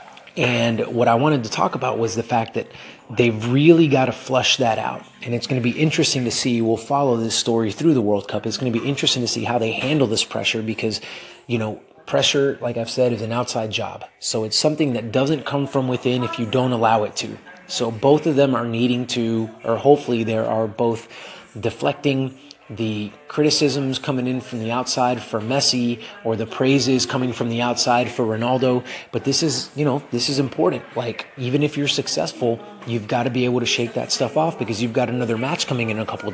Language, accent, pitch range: English, American, 115-140 Hz